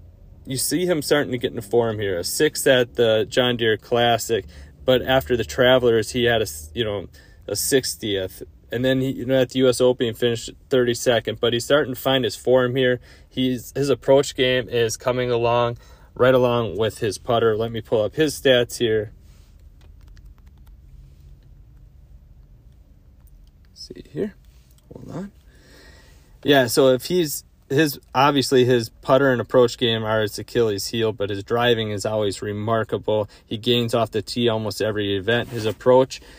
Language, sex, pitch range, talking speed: English, male, 95-125 Hz, 170 wpm